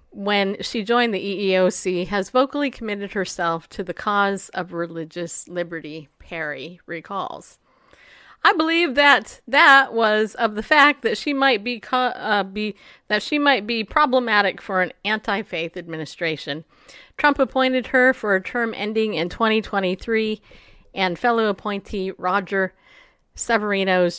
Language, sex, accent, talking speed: English, female, American, 135 wpm